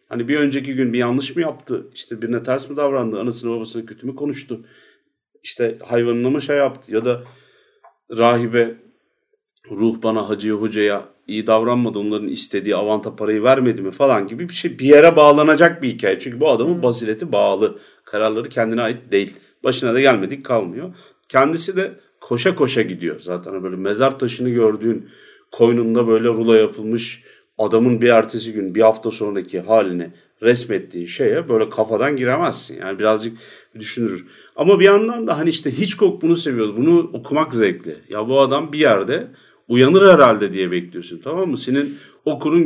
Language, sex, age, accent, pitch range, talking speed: English, male, 40-59, Turkish, 110-140 Hz, 160 wpm